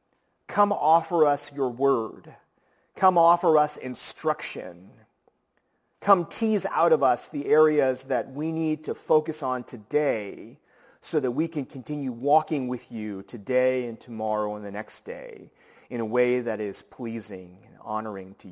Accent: American